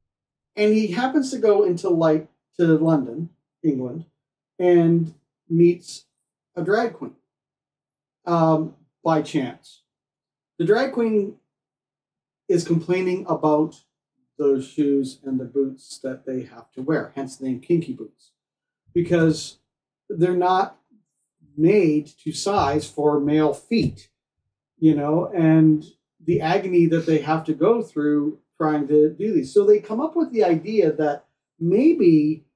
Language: English